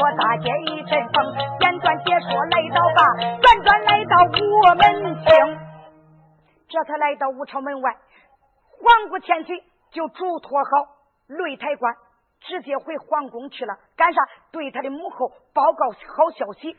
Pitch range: 265-370 Hz